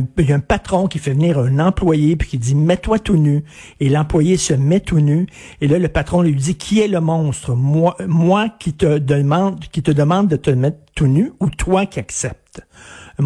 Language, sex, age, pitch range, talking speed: French, male, 60-79, 145-190 Hz, 250 wpm